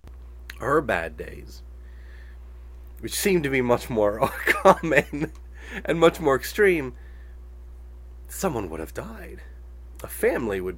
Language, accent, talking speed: English, American, 115 wpm